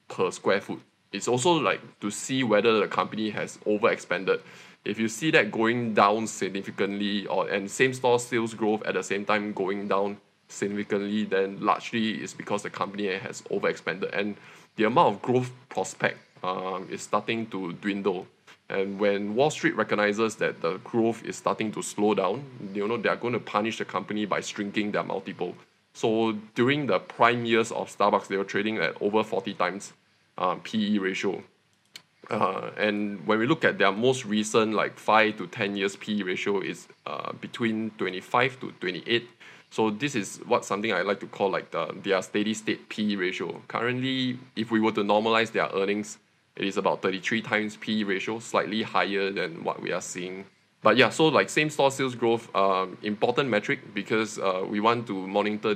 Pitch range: 100-115 Hz